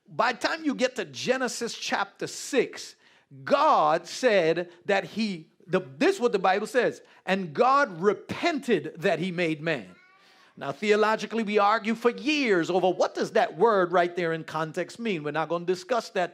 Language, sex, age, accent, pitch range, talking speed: English, male, 50-69, American, 180-255 Hz, 175 wpm